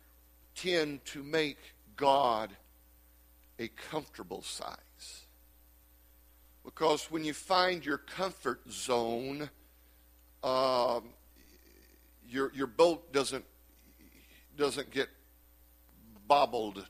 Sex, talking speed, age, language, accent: male, 80 wpm, 50-69, English, American